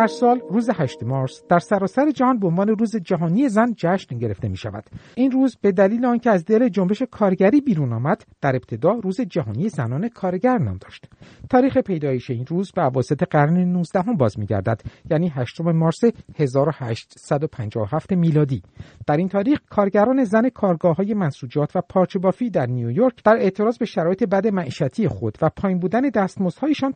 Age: 50-69